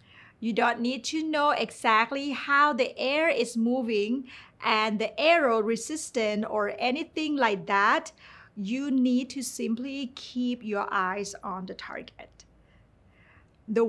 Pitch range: 210-260 Hz